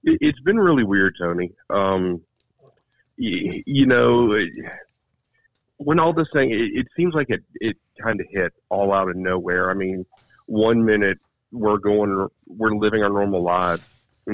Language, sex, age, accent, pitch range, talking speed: English, male, 40-59, American, 90-115 Hz, 160 wpm